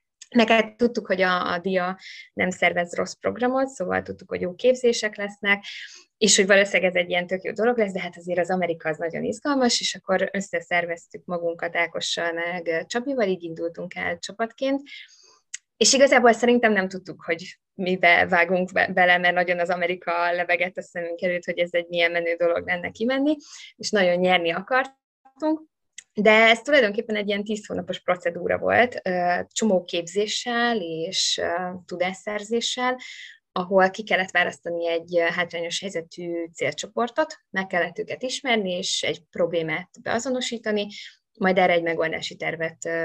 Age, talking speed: 20-39, 155 wpm